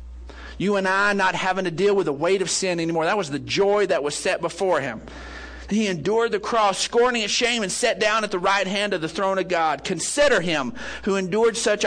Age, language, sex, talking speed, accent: 50-69, English, male, 235 wpm, American